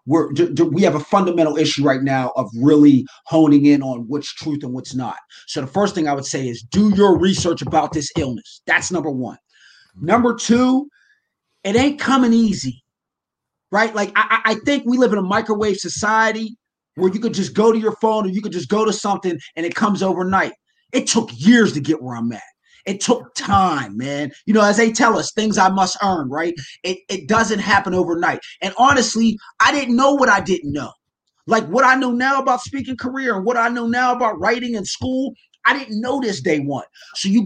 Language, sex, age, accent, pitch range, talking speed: English, male, 30-49, American, 165-230 Hz, 215 wpm